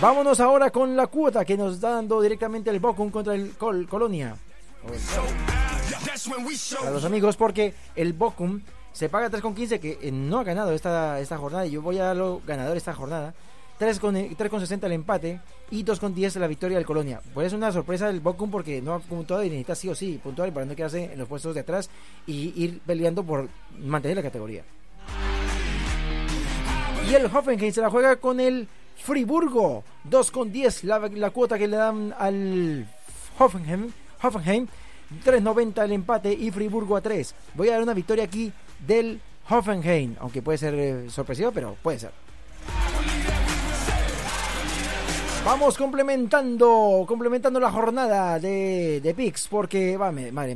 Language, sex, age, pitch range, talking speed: Spanish, male, 30-49, 165-225 Hz, 165 wpm